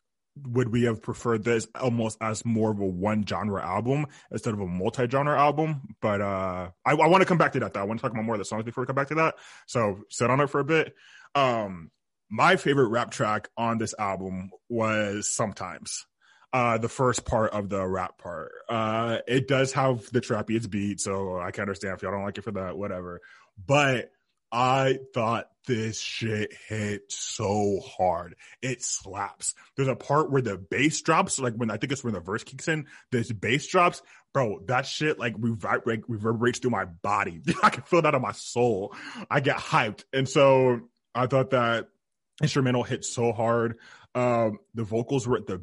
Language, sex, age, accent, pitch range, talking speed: English, male, 20-39, American, 105-130 Hz, 200 wpm